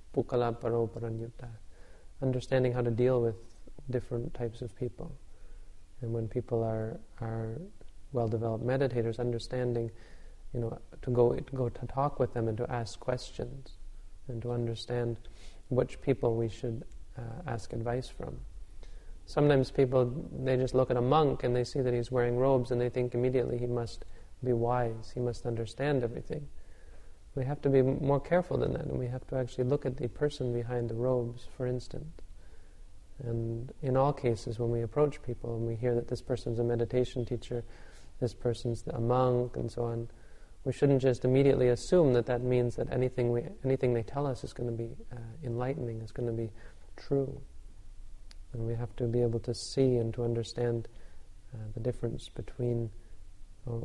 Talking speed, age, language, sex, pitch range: 180 wpm, 30-49, English, male, 115-130 Hz